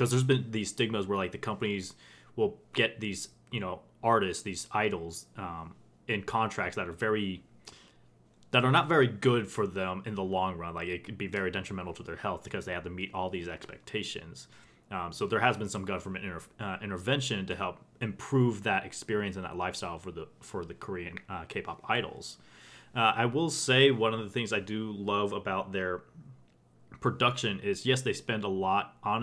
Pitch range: 95-120 Hz